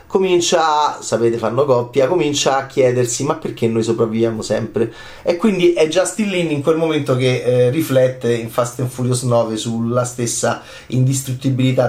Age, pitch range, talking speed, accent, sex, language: 30-49, 125-185 Hz, 160 wpm, native, male, Italian